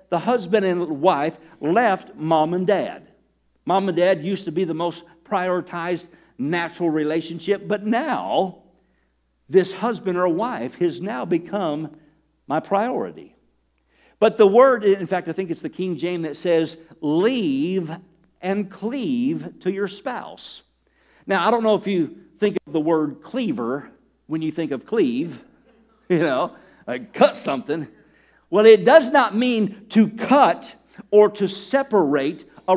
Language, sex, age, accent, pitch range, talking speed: English, male, 60-79, American, 165-230 Hz, 145 wpm